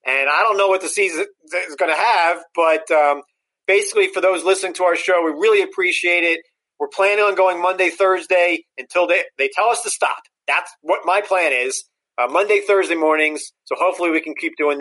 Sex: male